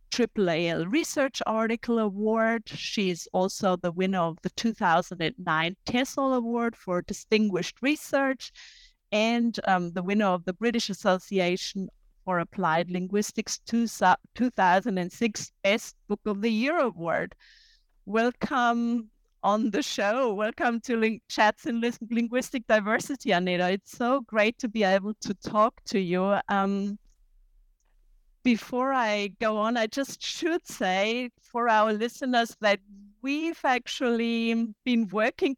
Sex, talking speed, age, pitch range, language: female, 125 wpm, 50-69, 195-240 Hz, English